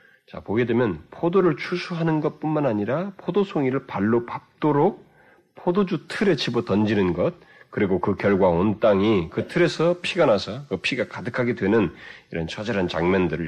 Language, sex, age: Korean, male, 40-59